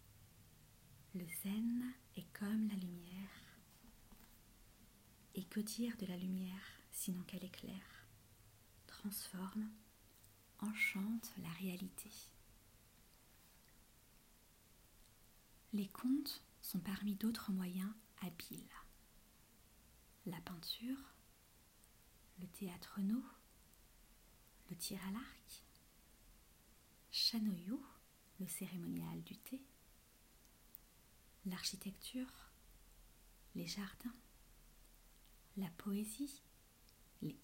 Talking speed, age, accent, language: 75 wpm, 40-59, French, French